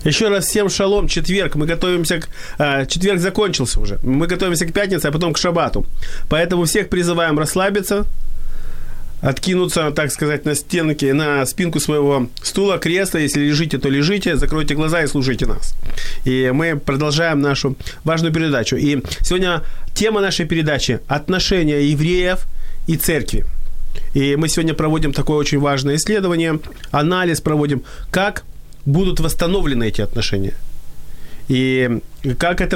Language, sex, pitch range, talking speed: Ukrainian, male, 135-170 Hz, 140 wpm